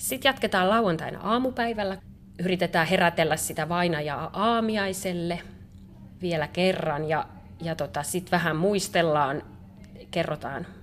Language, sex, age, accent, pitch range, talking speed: Finnish, female, 30-49, native, 155-190 Hz, 100 wpm